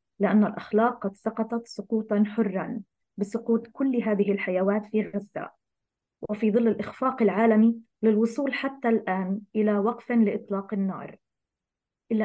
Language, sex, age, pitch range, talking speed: English, female, 20-39, 200-235 Hz, 120 wpm